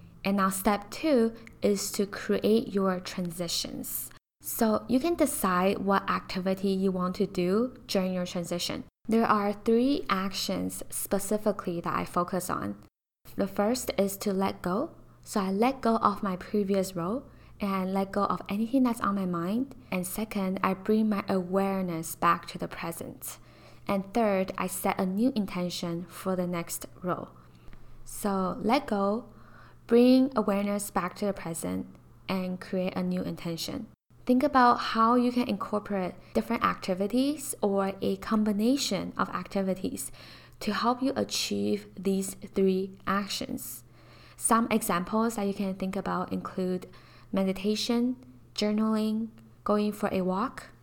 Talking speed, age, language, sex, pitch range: 145 wpm, 10-29, English, female, 185-225 Hz